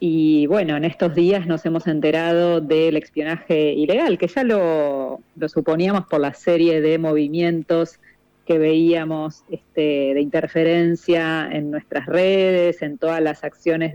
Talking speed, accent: 140 wpm, Argentinian